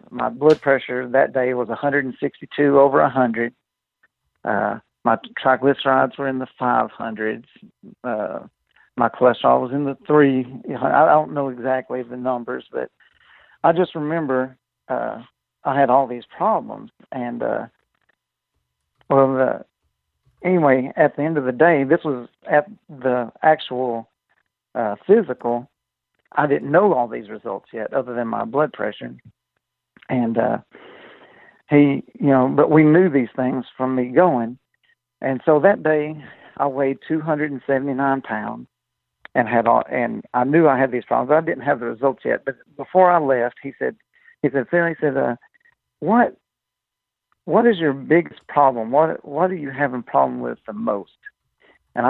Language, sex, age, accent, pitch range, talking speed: English, male, 60-79, American, 125-150 Hz, 160 wpm